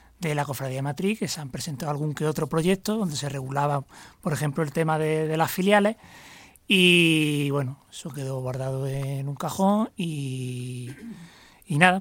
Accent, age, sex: Spanish, 30-49, male